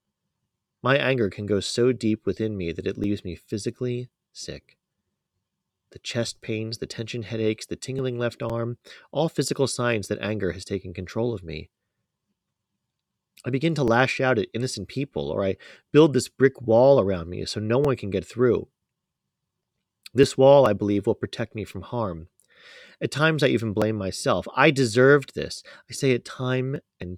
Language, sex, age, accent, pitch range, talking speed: English, male, 30-49, American, 95-125 Hz, 175 wpm